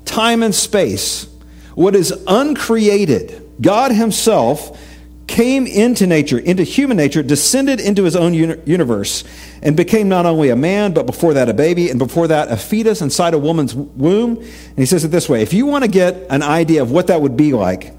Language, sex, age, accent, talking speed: English, male, 50-69, American, 195 wpm